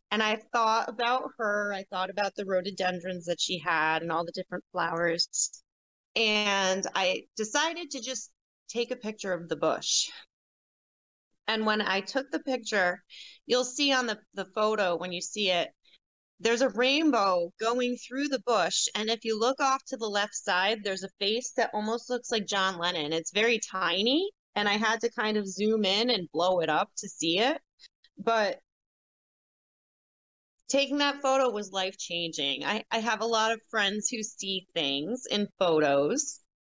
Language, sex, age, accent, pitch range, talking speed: English, female, 30-49, American, 185-235 Hz, 175 wpm